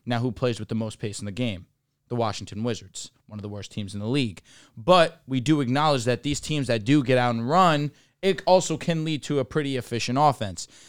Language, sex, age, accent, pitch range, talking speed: English, male, 20-39, American, 110-140 Hz, 235 wpm